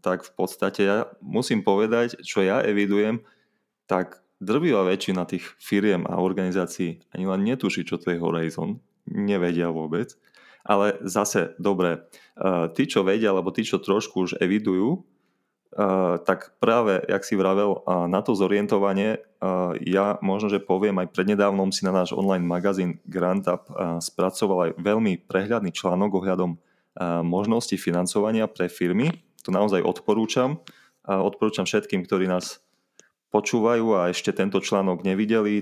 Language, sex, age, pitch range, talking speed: Slovak, male, 20-39, 90-105 Hz, 140 wpm